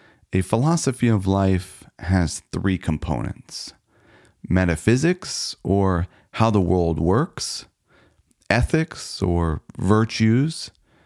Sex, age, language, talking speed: male, 30-49, English, 85 wpm